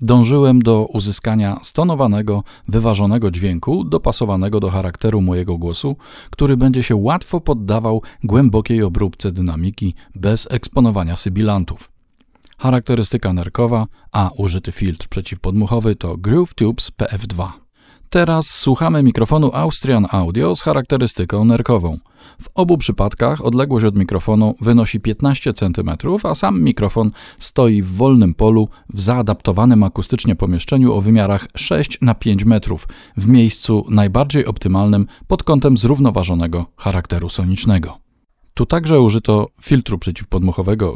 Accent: native